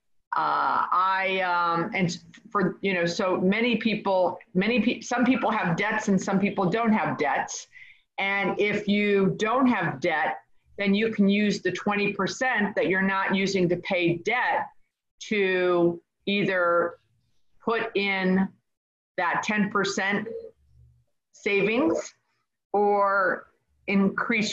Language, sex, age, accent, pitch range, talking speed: English, female, 50-69, American, 180-220 Hz, 120 wpm